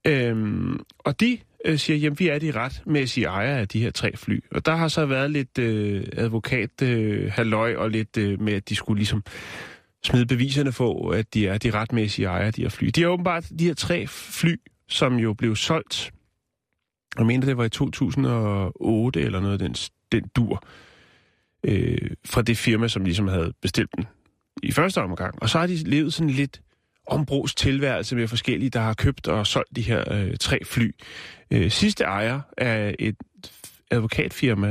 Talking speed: 185 wpm